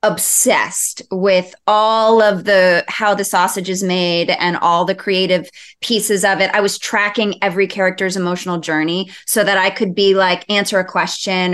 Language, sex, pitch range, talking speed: English, female, 180-220 Hz, 170 wpm